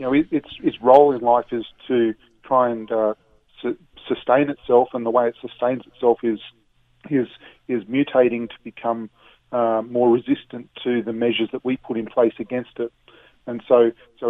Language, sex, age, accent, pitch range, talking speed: English, male, 40-59, Australian, 110-125 Hz, 180 wpm